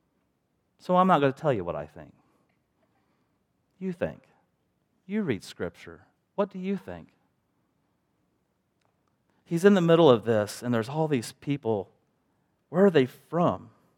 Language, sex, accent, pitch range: English, male, American, 120-175 Hz